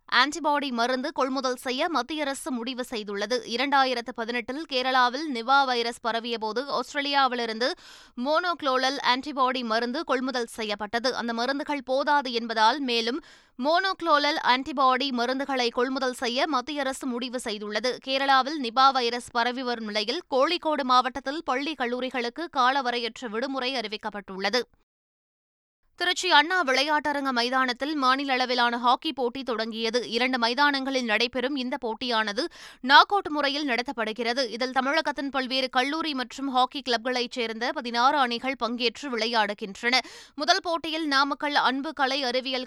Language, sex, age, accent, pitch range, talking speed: Tamil, female, 20-39, native, 240-285 Hz, 115 wpm